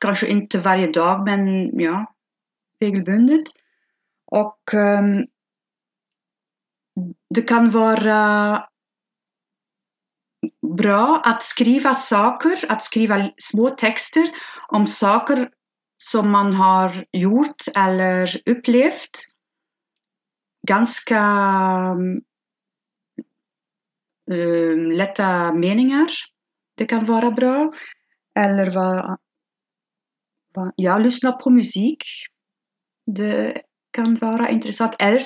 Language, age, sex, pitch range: Swedish, 30-49, female, 195-240 Hz